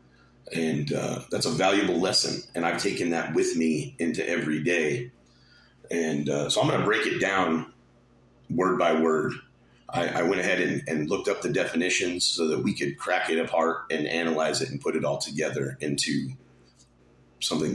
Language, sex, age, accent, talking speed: English, male, 40-59, American, 185 wpm